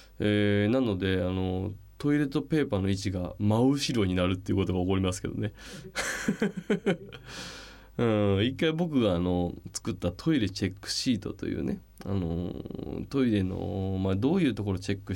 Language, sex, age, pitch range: Japanese, male, 20-39, 95-150 Hz